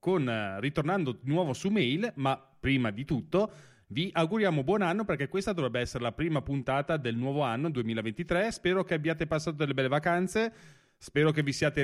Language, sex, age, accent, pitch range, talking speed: Italian, male, 30-49, native, 130-180 Hz, 180 wpm